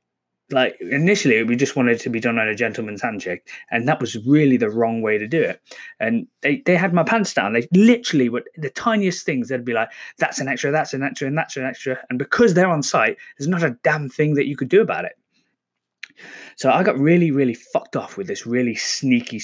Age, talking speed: 20-39, 230 wpm